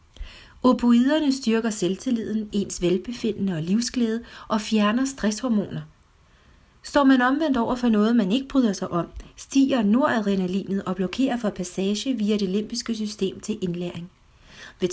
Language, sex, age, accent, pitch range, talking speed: Danish, female, 40-59, native, 190-240 Hz, 135 wpm